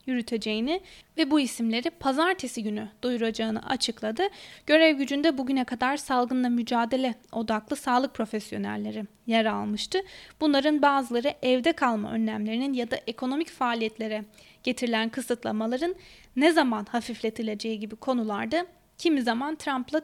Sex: female